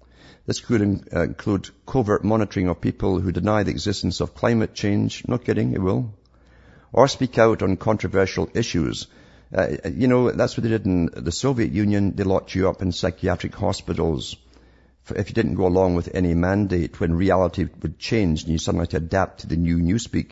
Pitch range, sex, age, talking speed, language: 85-105 Hz, male, 50-69, 190 wpm, English